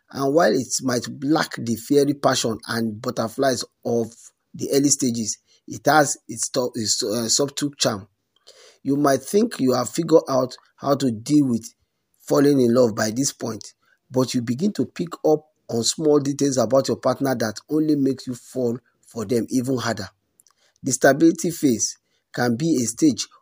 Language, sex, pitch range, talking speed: English, male, 115-145 Hz, 170 wpm